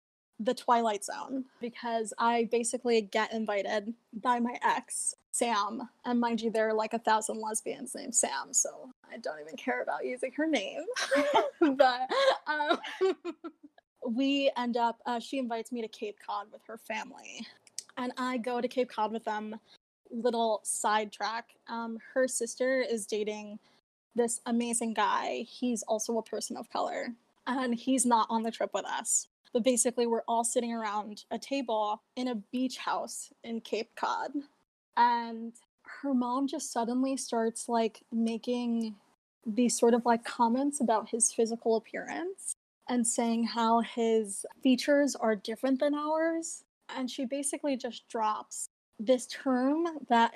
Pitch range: 225-260 Hz